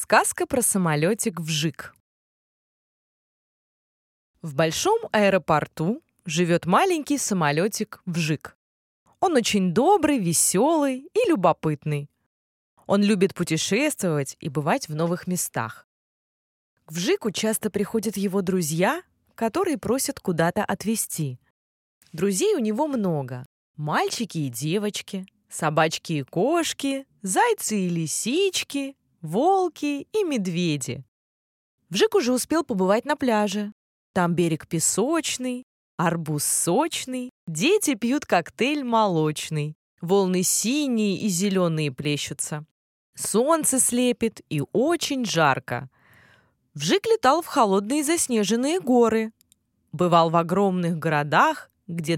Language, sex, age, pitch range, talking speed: Russian, female, 20-39, 160-250 Hz, 100 wpm